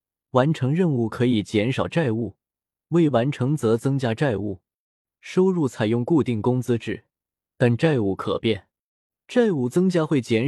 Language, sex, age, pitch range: Chinese, male, 20-39, 110-155 Hz